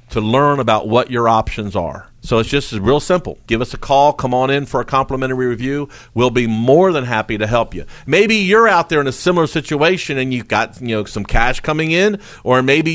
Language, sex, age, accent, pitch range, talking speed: English, male, 50-69, American, 130-185 Hz, 230 wpm